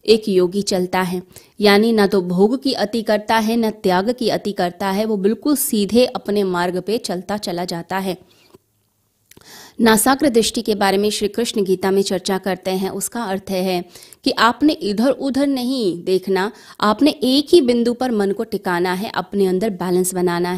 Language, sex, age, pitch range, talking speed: Hindi, female, 20-39, 190-235 Hz, 180 wpm